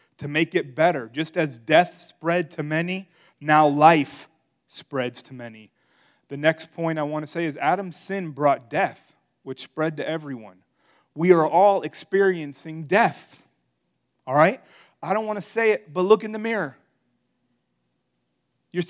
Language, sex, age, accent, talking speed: English, male, 30-49, American, 155 wpm